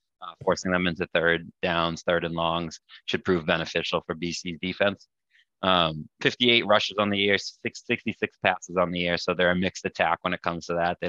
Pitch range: 85-95 Hz